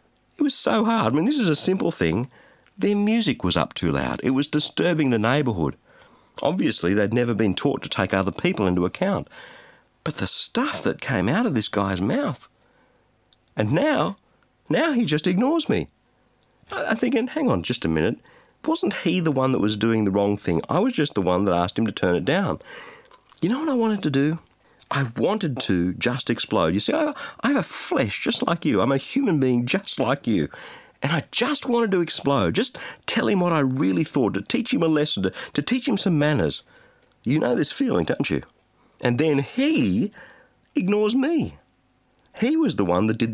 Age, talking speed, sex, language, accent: 50-69, 210 wpm, male, English, Australian